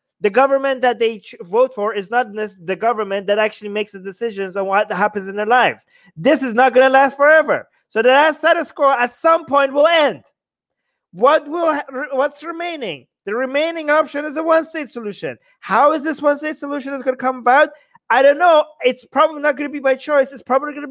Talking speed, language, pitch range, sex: 220 wpm, English, 230-295 Hz, male